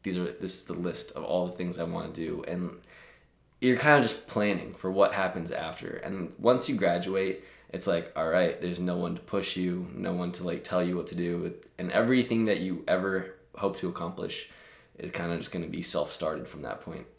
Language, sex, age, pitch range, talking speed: English, male, 20-39, 90-105 Hz, 235 wpm